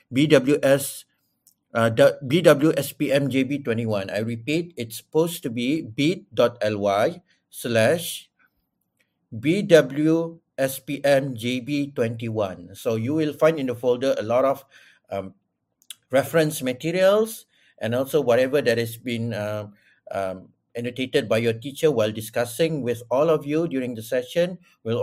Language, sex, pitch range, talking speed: Malay, male, 105-140 Hz, 115 wpm